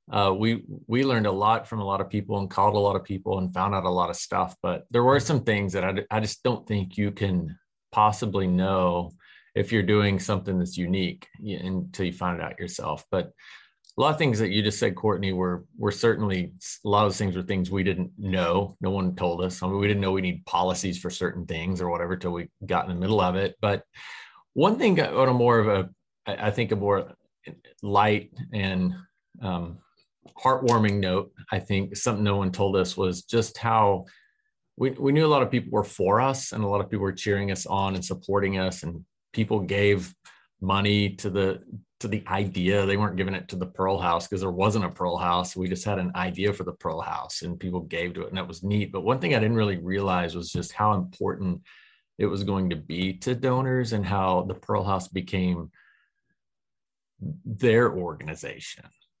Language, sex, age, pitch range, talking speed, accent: English, male, 30-49, 90-105 Hz, 220 wpm, American